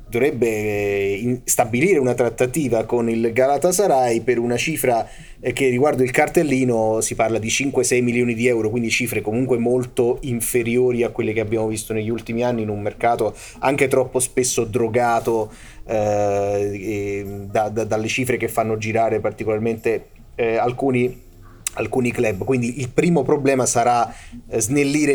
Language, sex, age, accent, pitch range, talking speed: Italian, male, 30-49, native, 110-125 Hz, 140 wpm